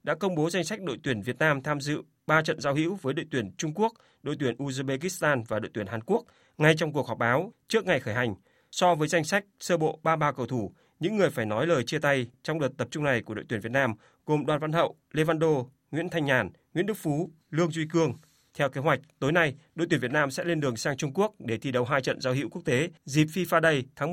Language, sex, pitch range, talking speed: Vietnamese, male, 130-165 Hz, 265 wpm